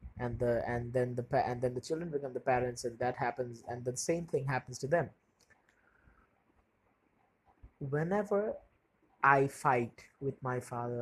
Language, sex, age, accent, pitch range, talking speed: English, male, 20-39, Indian, 120-150 Hz, 160 wpm